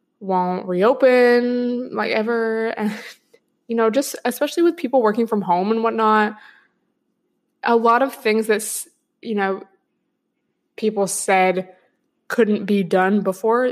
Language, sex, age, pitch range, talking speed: English, female, 20-39, 190-255 Hz, 125 wpm